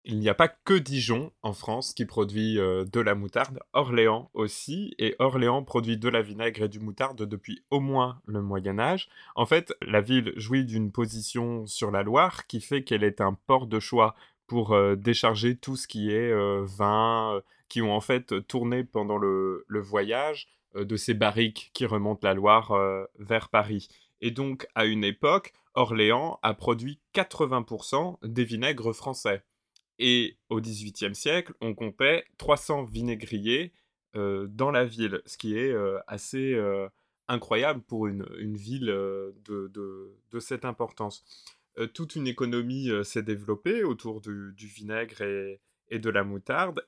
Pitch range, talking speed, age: 105-125 Hz, 170 wpm, 20-39